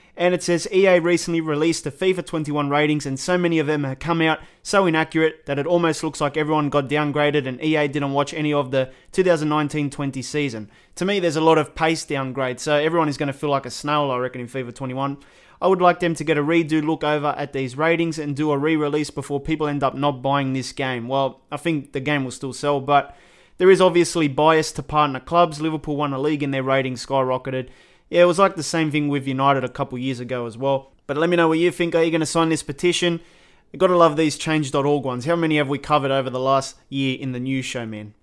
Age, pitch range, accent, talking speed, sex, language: 20-39, 140-165 Hz, Australian, 250 wpm, male, English